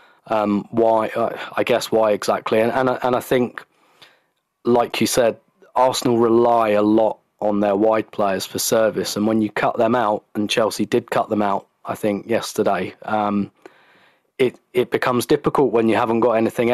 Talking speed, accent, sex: 180 wpm, British, male